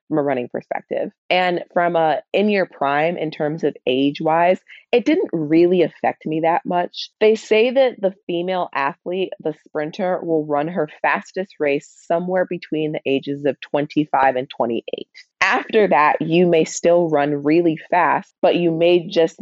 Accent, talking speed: American, 165 wpm